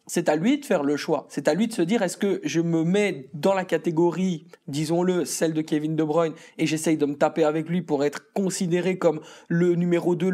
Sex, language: male, French